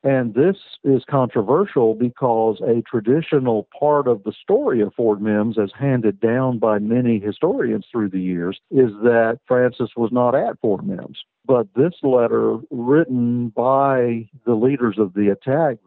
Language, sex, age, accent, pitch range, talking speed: English, male, 50-69, American, 110-135 Hz, 155 wpm